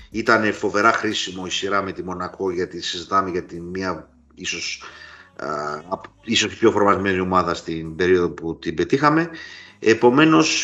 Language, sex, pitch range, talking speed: Greek, male, 90-135 Hz, 145 wpm